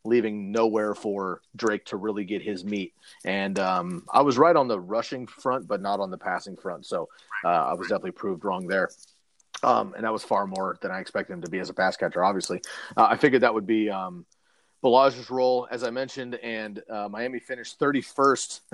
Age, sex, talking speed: 30-49, male, 210 wpm